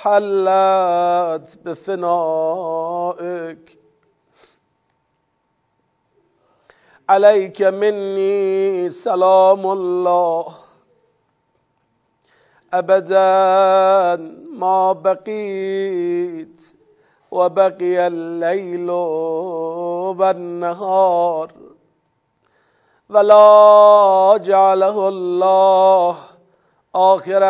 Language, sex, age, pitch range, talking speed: Persian, male, 50-69, 170-195 Hz, 35 wpm